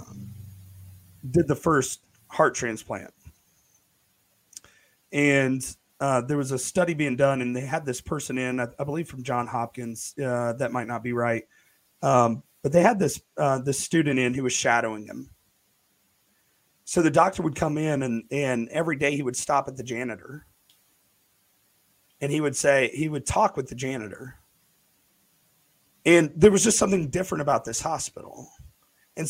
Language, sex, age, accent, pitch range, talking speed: English, male, 40-59, American, 120-160 Hz, 165 wpm